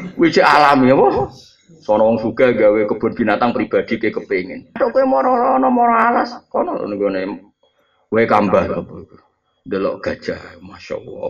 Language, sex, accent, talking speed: Indonesian, male, native, 170 wpm